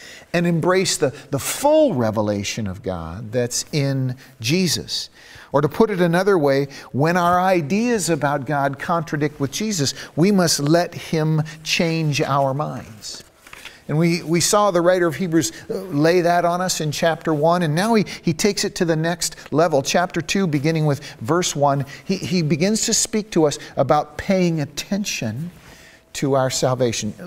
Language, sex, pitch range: English, male, 125-175 Hz